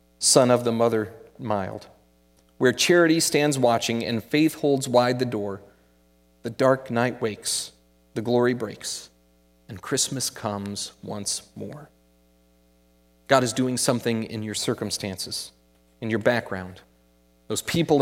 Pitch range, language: 100-150 Hz, English